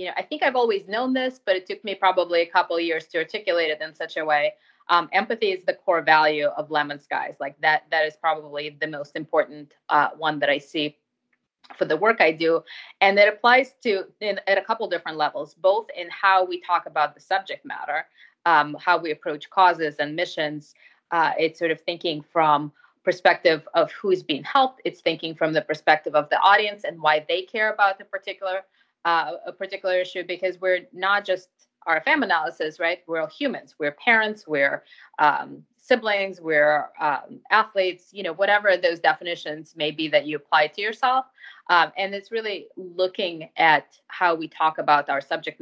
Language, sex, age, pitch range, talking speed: English, female, 20-39, 155-205 Hz, 195 wpm